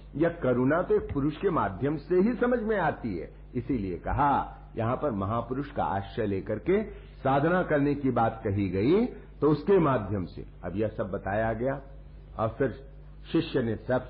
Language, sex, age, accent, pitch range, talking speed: Hindi, male, 60-79, native, 115-170 Hz, 175 wpm